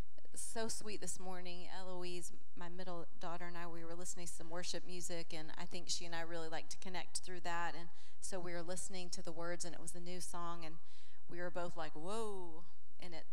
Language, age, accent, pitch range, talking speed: English, 30-49, American, 160-185 Hz, 230 wpm